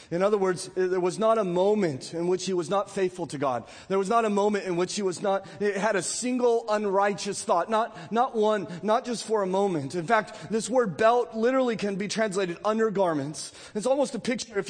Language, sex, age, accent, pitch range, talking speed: English, male, 30-49, American, 195-255 Hz, 225 wpm